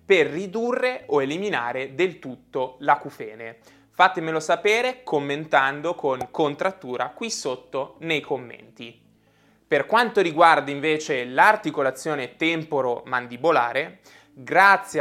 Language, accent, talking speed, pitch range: Italian, native, 90 wpm, 130-190 Hz